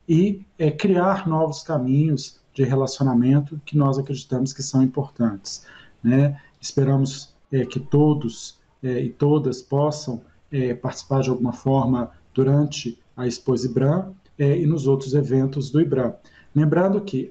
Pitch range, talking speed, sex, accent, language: 135-165 Hz, 140 wpm, male, Brazilian, Portuguese